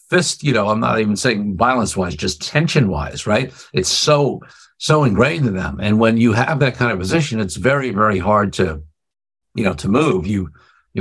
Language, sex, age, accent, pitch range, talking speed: English, male, 60-79, American, 90-120 Hz, 205 wpm